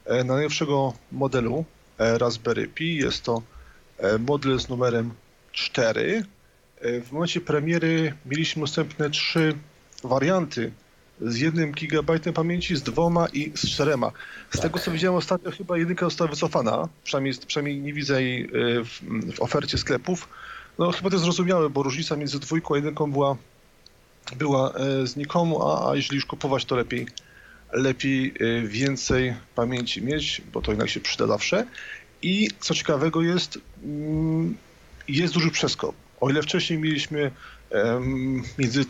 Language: Polish